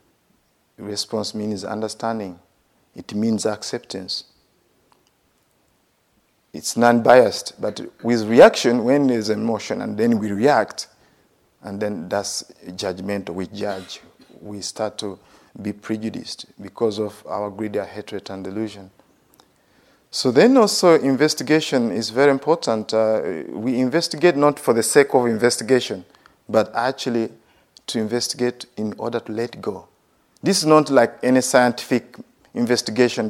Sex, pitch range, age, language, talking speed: male, 105-135 Hz, 50-69, English, 125 wpm